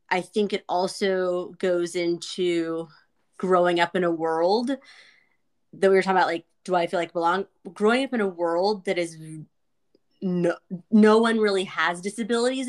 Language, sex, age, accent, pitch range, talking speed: English, female, 20-39, American, 175-225 Hz, 165 wpm